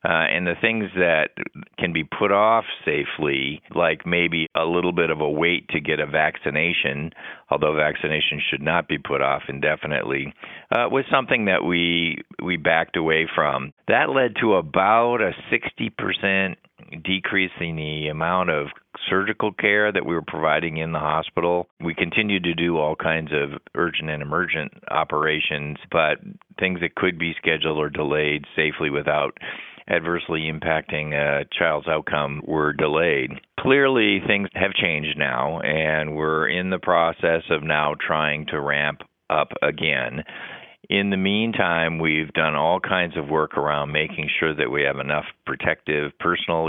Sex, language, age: male, English, 50-69